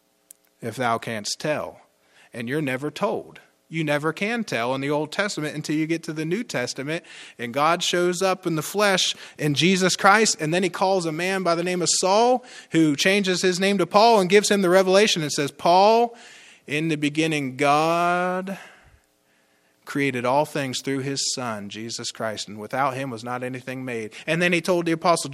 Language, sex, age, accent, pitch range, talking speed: English, male, 30-49, American, 130-180 Hz, 195 wpm